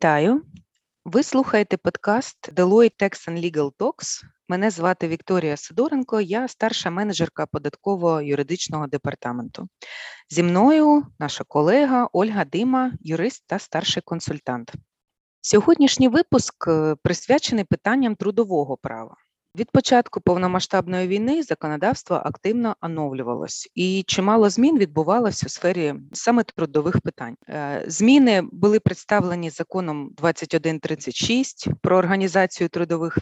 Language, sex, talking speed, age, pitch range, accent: Ukrainian, female, 105 wpm, 20-39, 165-230 Hz, native